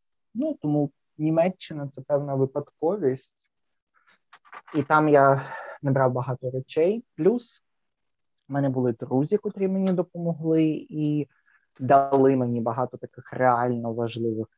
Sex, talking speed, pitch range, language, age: male, 120 wpm, 125-145 Hz, Ukrainian, 20-39